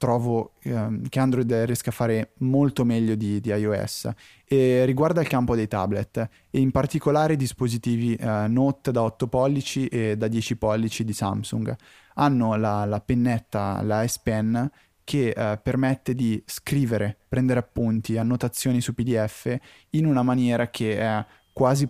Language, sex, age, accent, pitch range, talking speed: Italian, male, 20-39, native, 110-130 Hz, 155 wpm